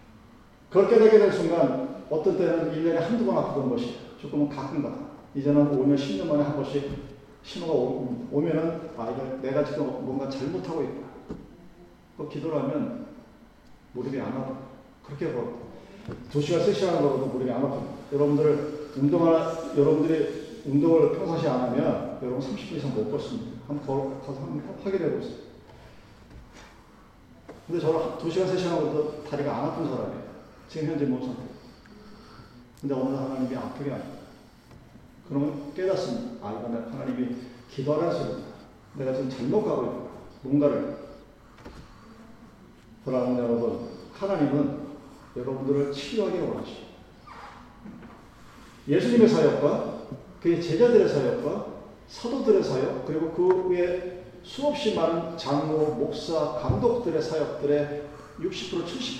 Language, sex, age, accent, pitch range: Korean, male, 40-59, native, 135-165 Hz